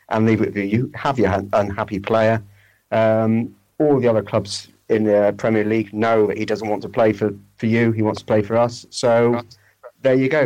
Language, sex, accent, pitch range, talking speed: English, male, British, 100-120 Hz, 225 wpm